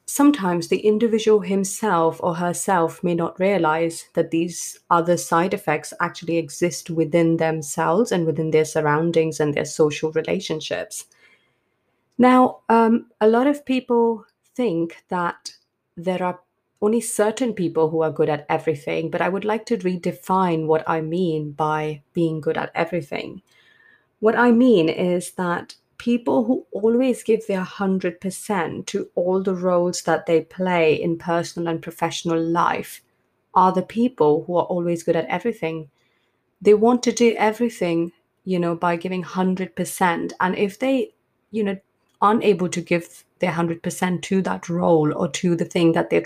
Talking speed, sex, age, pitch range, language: 155 wpm, female, 30-49, 165-210 Hz, English